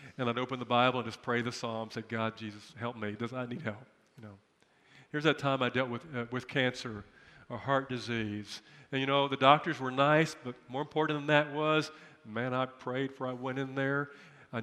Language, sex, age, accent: English, male, 50-69, American